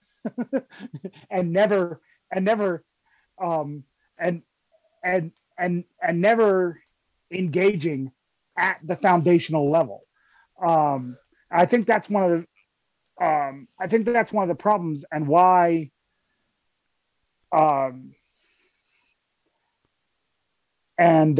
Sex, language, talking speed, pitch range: male, English, 100 wpm, 145-190 Hz